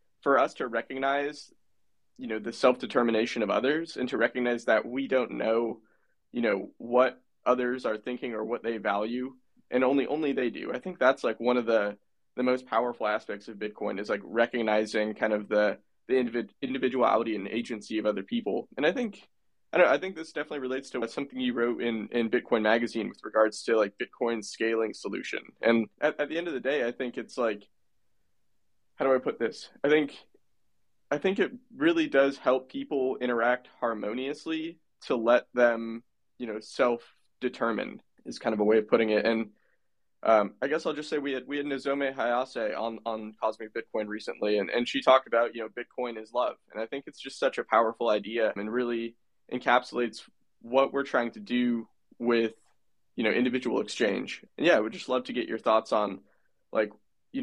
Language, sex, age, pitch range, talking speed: English, male, 20-39, 110-135 Hz, 195 wpm